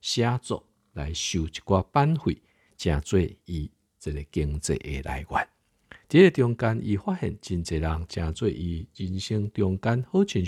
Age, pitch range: 50-69, 80-110 Hz